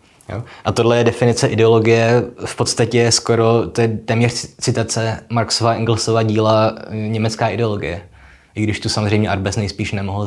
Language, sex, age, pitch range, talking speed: Czech, male, 20-39, 110-125 Hz, 145 wpm